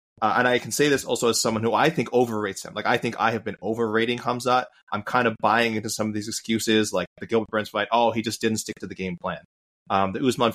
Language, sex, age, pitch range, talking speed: English, male, 20-39, 100-120 Hz, 275 wpm